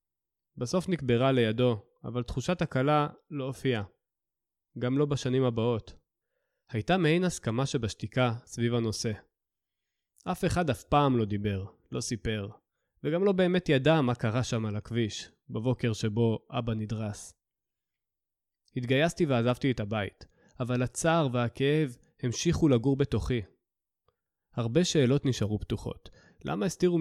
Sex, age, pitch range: male, 20-39, 110-150 Hz